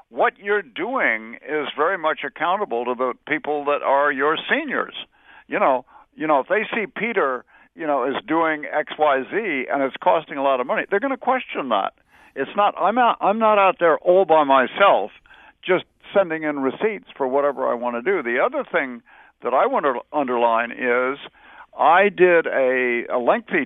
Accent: American